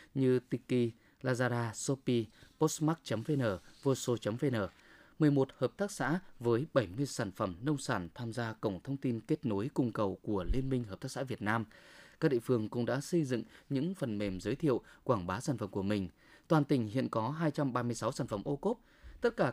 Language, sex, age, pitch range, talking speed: Vietnamese, male, 20-39, 115-155 Hz, 215 wpm